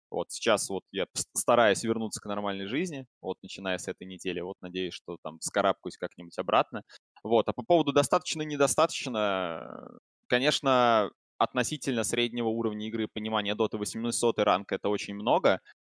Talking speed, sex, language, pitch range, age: 145 wpm, male, Russian, 95-120 Hz, 20-39